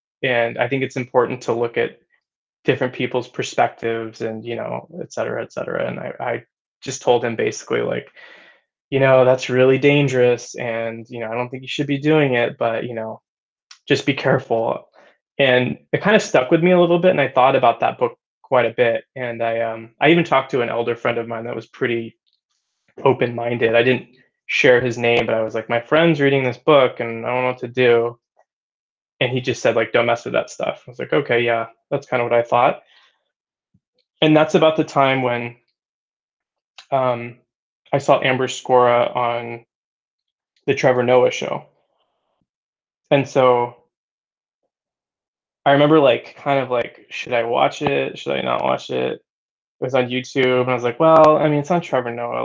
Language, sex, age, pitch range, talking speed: English, male, 20-39, 120-140 Hz, 195 wpm